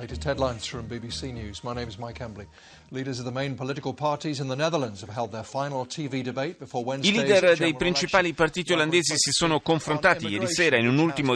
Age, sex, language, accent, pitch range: 30-49, male, Italian, native, 110-145 Hz